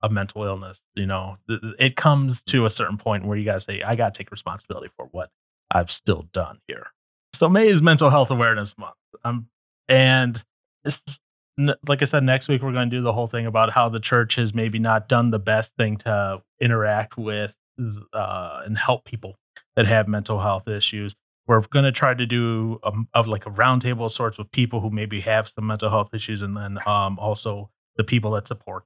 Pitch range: 105-120 Hz